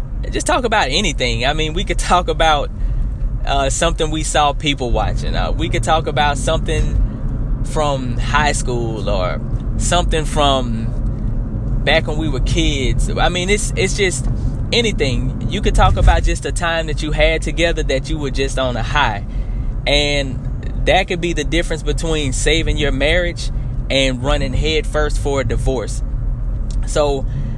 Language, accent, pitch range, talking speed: English, American, 125-155 Hz, 165 wpm